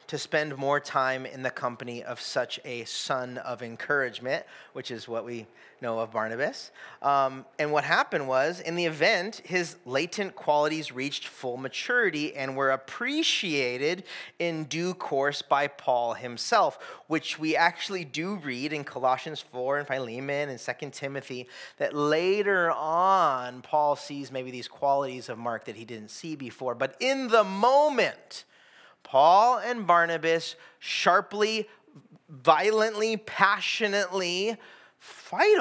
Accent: American